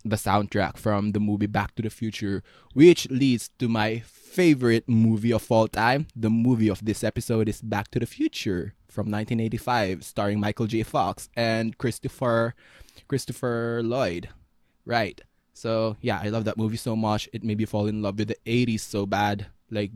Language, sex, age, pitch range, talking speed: English, male, 20-39, 105-120 Hz, 175 wpm